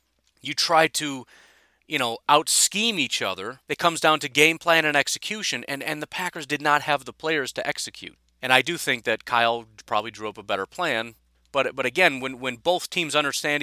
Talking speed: 205 wpm